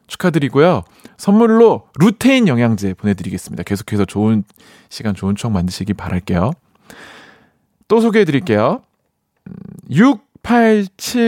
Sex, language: male, Korean